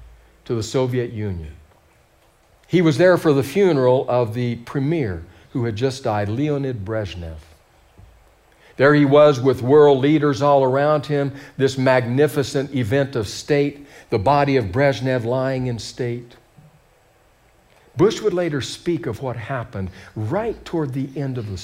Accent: American